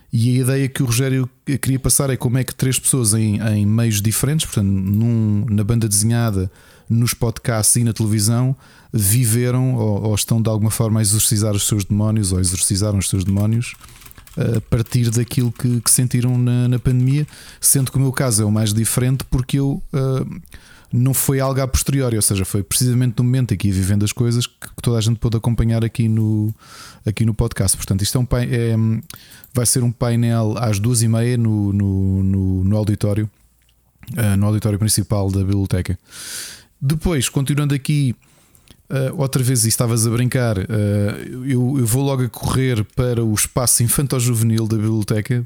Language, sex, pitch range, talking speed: Portuguese, male, 105-125 Hz, 175 wpm